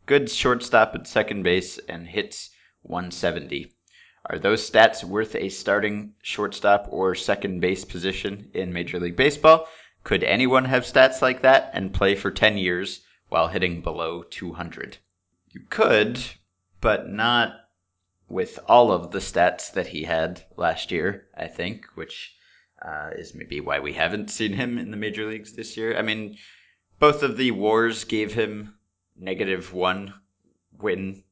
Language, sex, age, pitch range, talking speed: English, male, 30-49, 90-105 Hz, 155 wpm